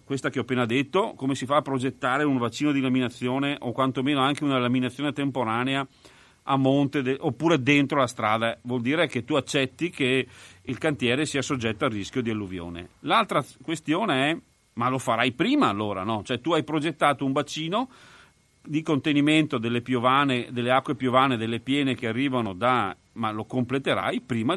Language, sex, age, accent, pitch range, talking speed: Italian, male, 40-59, native, 120-145 Hz, 175 wpm